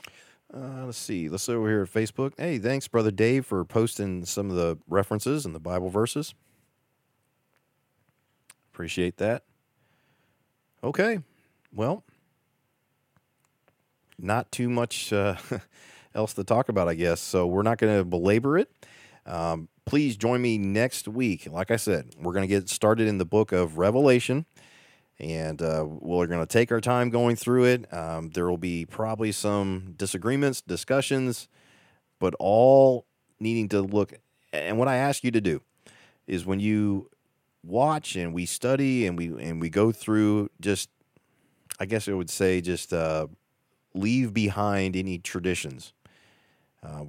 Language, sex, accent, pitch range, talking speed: English, male, American, 90-125 Hz, 155 wpm